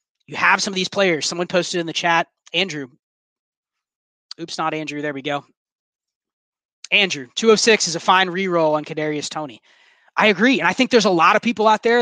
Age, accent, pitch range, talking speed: 20-39, American, 160-205 Hz, 195 wpm